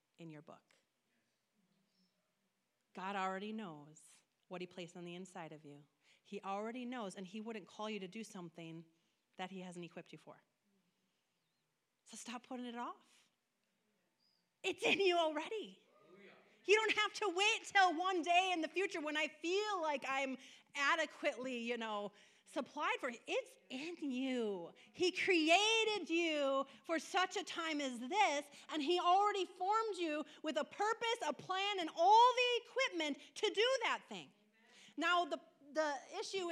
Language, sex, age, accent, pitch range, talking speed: English, female, 30-49, American, 205-325 Hz, 155 wpm